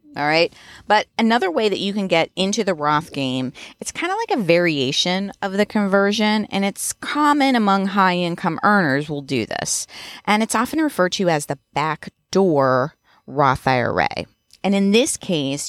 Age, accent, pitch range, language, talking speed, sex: 30-49, American, 145-195 Hz, English, 175 wpm, female